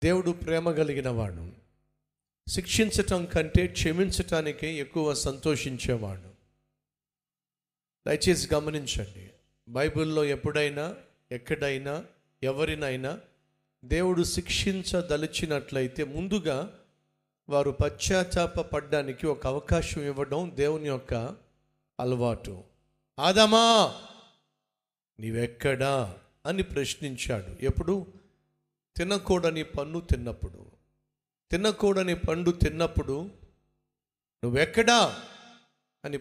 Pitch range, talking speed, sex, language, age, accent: 130-180 Hz, 65 wpm, male, Telugu, 50-69, native